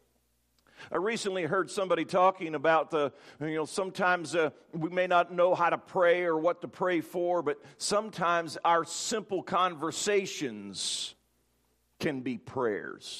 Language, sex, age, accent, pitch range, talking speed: English, male, 50-69, American, 160-225 Hz, 140 wpm